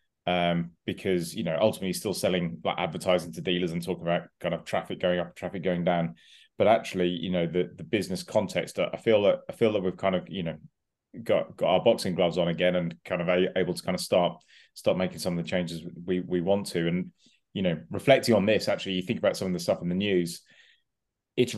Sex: male